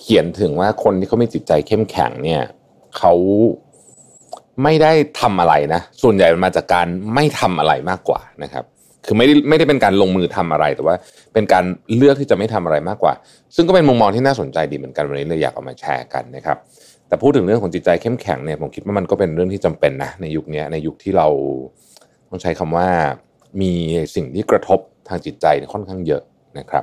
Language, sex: Thai, male